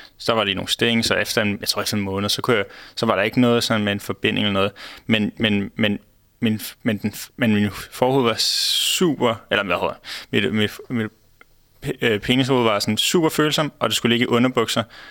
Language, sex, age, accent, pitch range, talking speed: Danish, male, 20-39, native, 105-120 Hz, 185 wpm